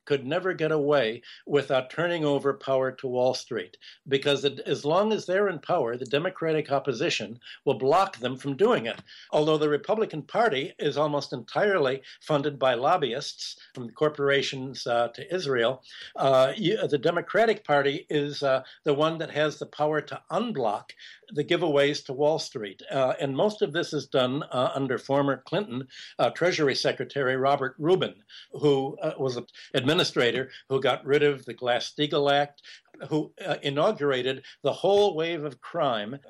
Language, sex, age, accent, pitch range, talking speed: English, male, 60-79, American, 135-170 Hz, 160 wpm